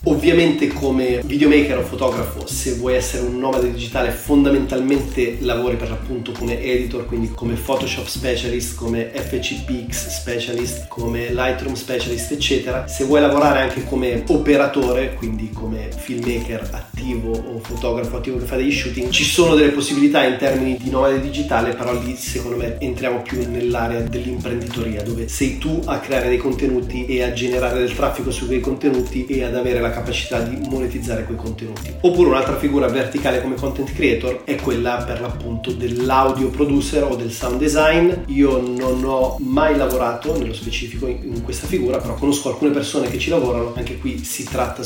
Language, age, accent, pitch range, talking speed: Italian, 30-49, native, 120-135 Hz, 165 wpm